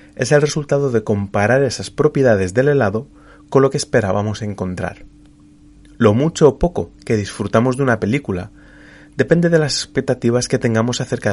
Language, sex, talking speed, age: Spanish, male, 160 wpm, 30-49